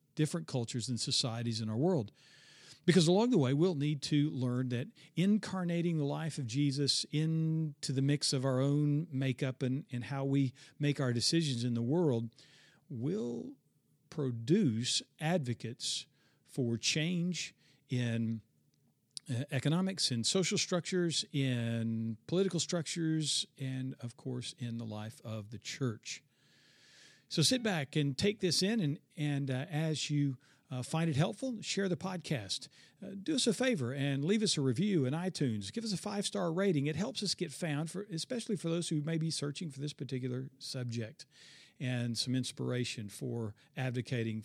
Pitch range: 125-170 Hz